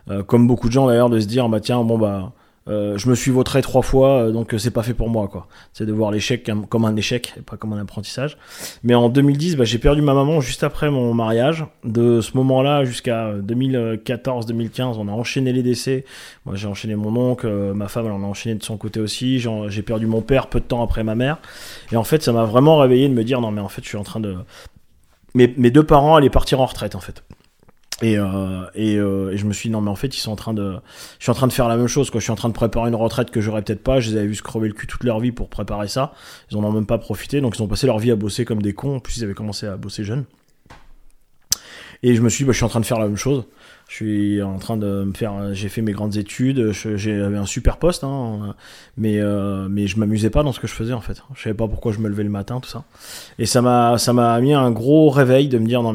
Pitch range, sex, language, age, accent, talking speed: 105-125 Hz, male, French, 20-39, French, 285 wpm